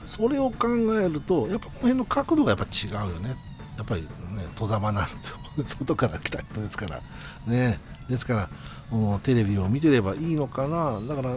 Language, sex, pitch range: Japanese, male, 95-145 Hz